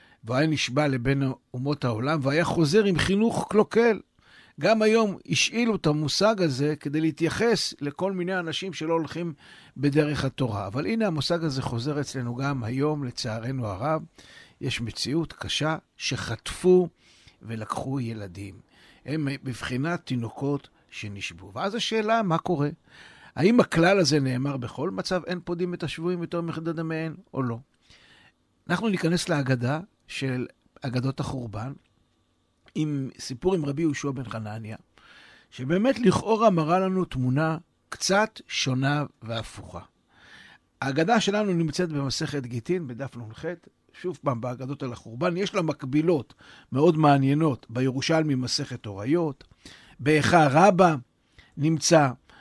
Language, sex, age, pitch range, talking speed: Hebrew, male, 60-79, 130-175 Hz, 125 wpm